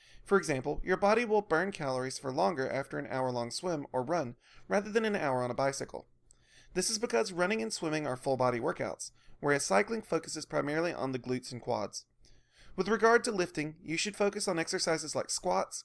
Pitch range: 135-190 Hz